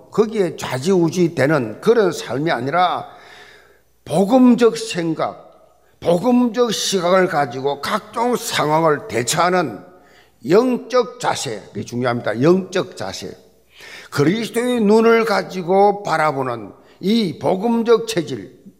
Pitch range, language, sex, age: 155-235 Hz, Korean, male, 50-69